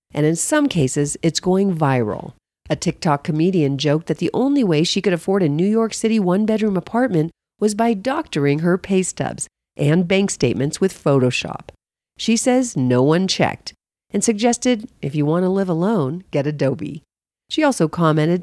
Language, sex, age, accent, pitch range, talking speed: English, female, 40-59, American, 145-210 Hz, 175 wpm